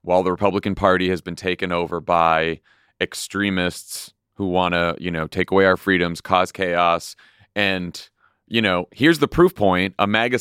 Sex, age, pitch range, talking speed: male, 30-49, 90-115 Hz, 175 wpm